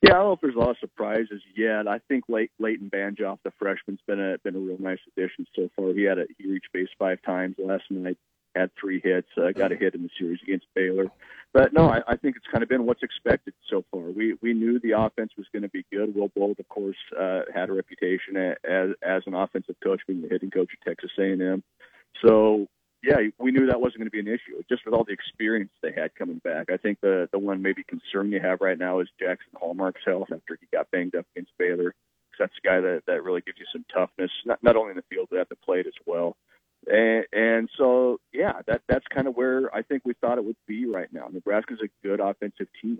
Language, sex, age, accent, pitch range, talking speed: English, male, 40-59, American, 95-125 Hz, 260 wpm